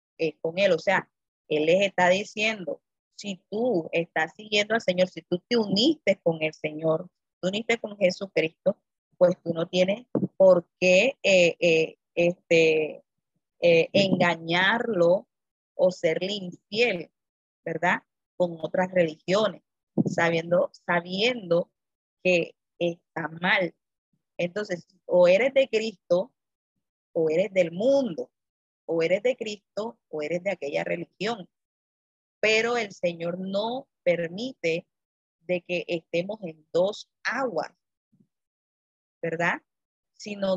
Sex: female